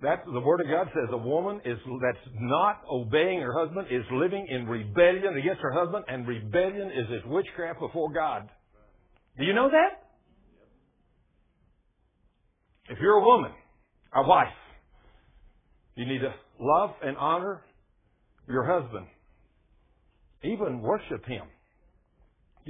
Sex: male